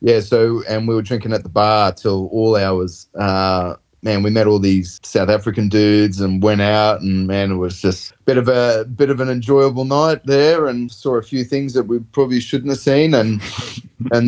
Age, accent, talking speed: 30-49, Australian, 220 wpm